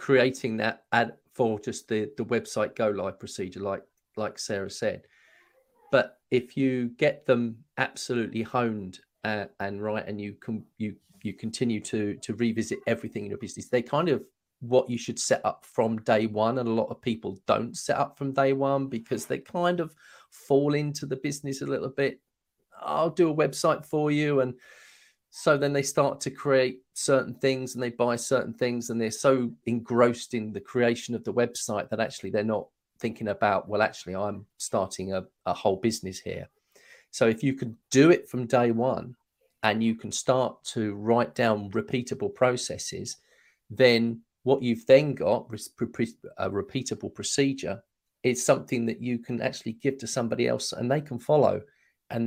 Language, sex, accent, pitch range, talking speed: English, male, British, 115-135 Hz, 180 wpm